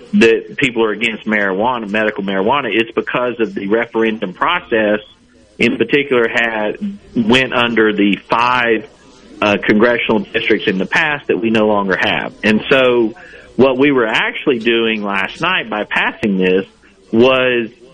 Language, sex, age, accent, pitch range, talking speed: English, male, 40-59, American, 110-140 Hz, 145 wpm